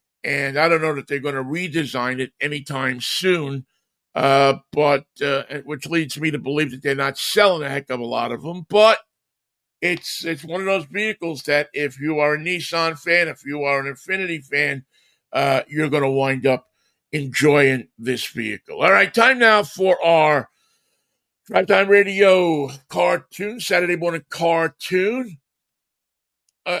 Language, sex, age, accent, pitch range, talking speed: English, male, 50-69, American, 140-180 Hz, 165 wpm